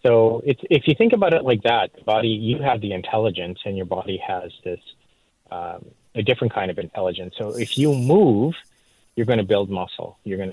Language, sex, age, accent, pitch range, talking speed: English, male, 30-49, American, 95-115 Hz, 200 wpm